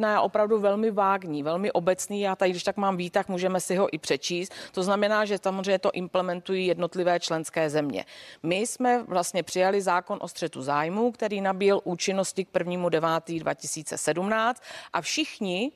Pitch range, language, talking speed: 175-210 Hz, Czech, 165 wpm